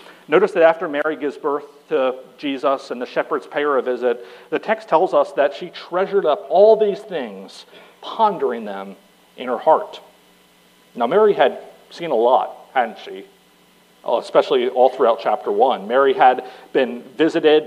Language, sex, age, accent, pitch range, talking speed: English, male, 40-59, American, 135-165 Hz, 165 wpm